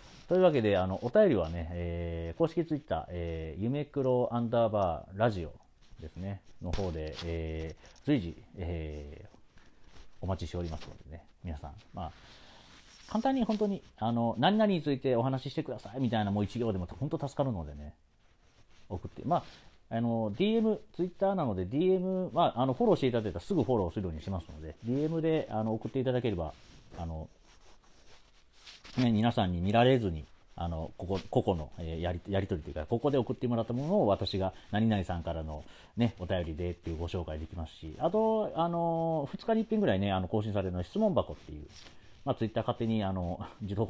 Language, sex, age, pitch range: Japanese, male, 40-59, 85-135 Hz